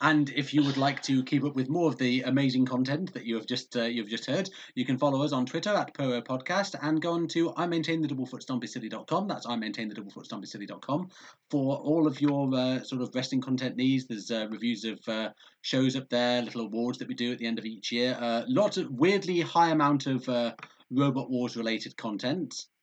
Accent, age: British, 30-49